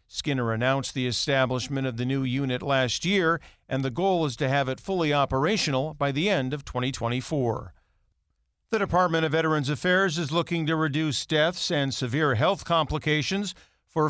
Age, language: 50-69, English